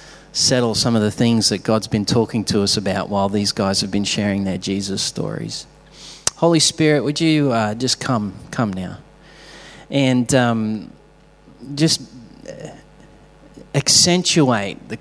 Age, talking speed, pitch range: 30-49, 140 wpm, 105-130 Hz